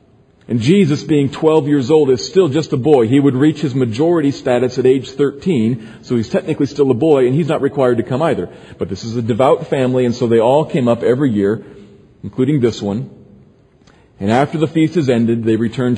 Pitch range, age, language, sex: 115-140 Hz, 40-59, English, male